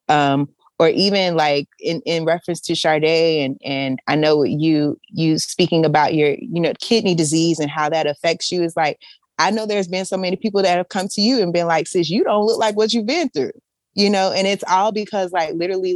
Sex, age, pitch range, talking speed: female, 20-39, 150-180 Hz, 230 wpm